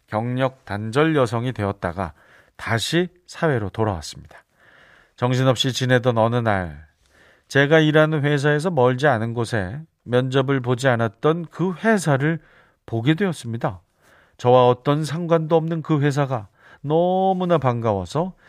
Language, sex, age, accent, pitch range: Korean, male, 40-59, native, 115-150 Hz